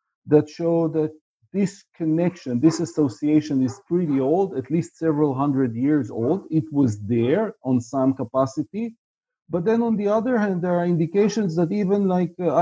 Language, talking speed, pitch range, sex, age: English, 165 wpm, 135-180 Hz, male, 40-59